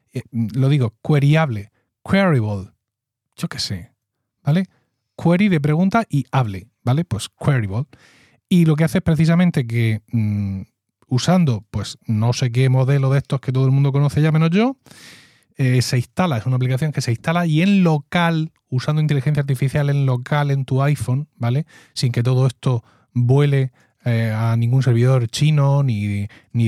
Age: 30-49